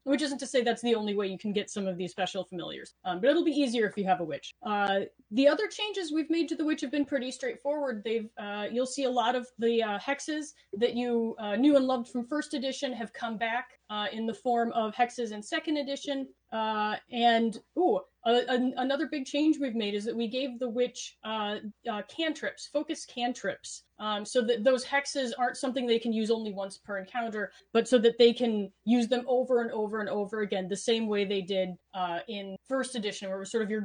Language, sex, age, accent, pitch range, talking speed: English, female, 30-49, American, 205-260 Hz, 240 wpm